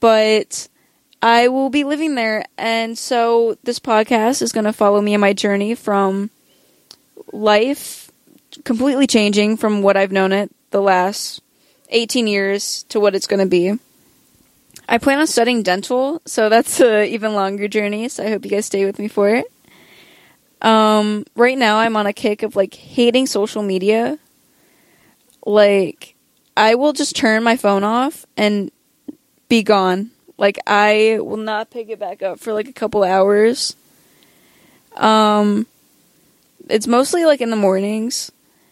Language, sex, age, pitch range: English, female, 20-39, 205-235 Hz